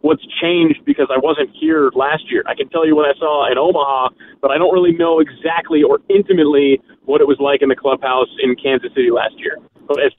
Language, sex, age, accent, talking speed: English, male, 30-49, American, 230 wpm